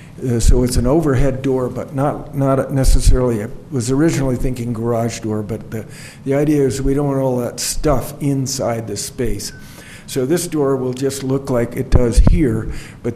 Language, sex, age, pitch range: English, male, 50-69, 115-135 Hz